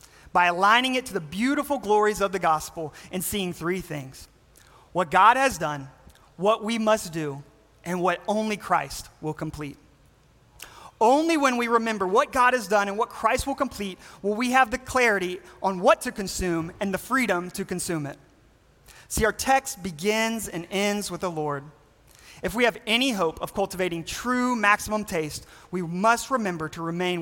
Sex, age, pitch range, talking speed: male, 30-49, 170-230 Hz, 175 wpm